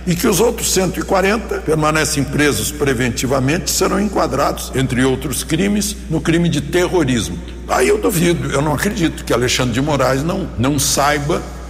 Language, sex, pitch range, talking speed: Portuguese, male, 130-175 Hz, 160 wpm